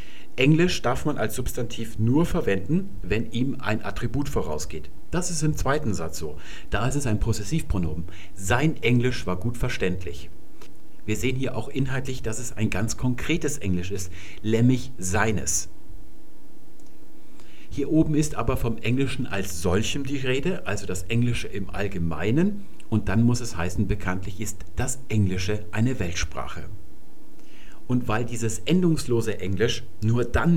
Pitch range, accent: 95-130 Hz, German